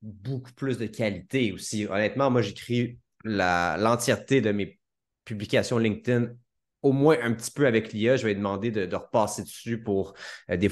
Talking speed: 180 wpm